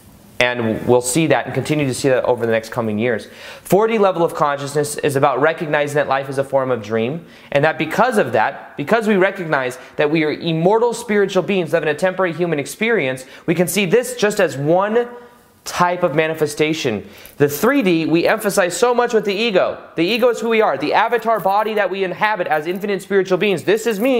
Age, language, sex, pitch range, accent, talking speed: 20-39, English, male, 150-200 Hz, American, 215 wpm